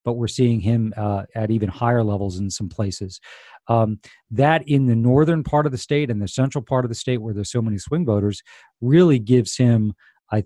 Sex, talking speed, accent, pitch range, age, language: male, 220 wpm, American, 110-140 Hz, 40-59, English